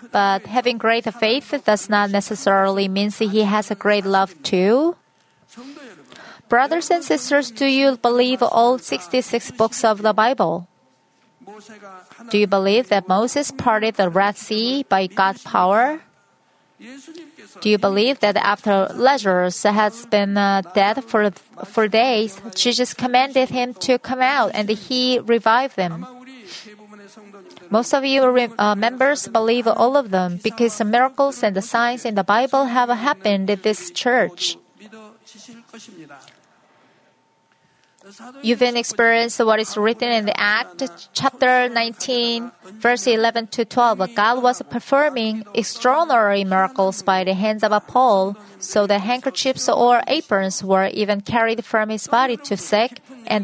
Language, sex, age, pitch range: Korean, female, 30-49, 200-250 Hz